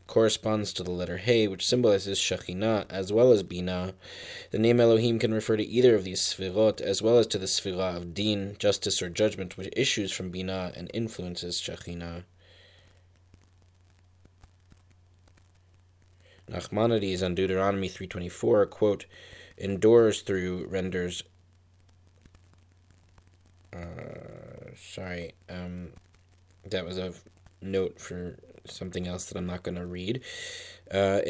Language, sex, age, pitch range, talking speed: English, male, 20-39, 90-105 Hz, 125 wpm